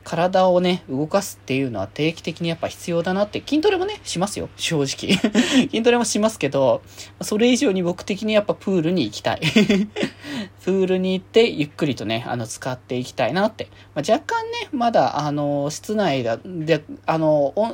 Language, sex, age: Japanese, male, 20-39